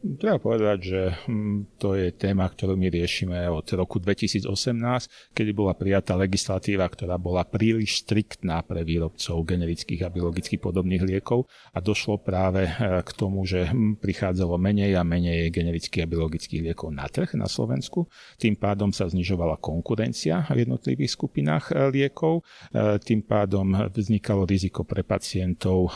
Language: Slovak